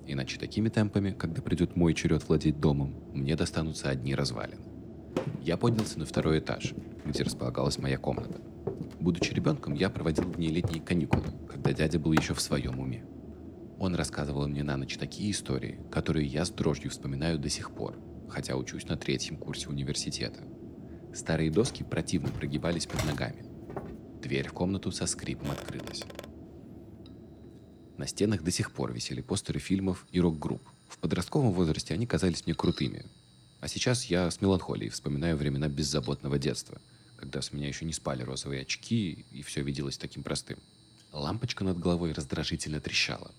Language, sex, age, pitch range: Russian, male, 20-39, 70-95 Hz